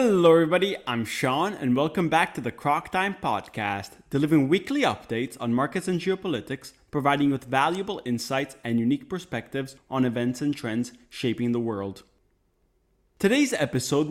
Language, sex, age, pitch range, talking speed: English, male, 30-49, 120-180 Hz, 150 wpm